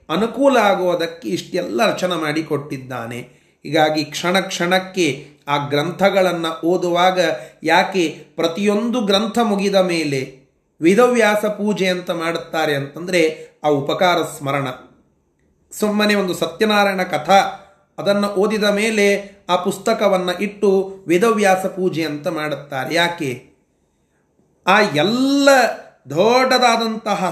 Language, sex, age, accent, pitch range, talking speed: Kannada, male, 30-49, native, 165-220 Hz, 90 wpm